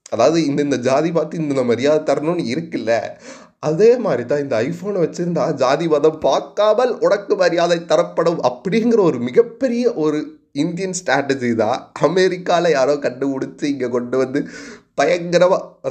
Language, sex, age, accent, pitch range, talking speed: Tamil, male, 30-49, native, 130-175 Hz, 130 wpm